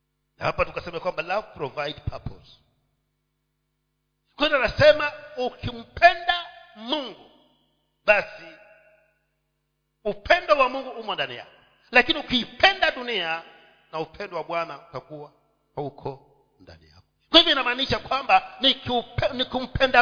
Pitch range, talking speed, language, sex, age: 195-295 Hz, 100 wpm, Swahili, male, 50-69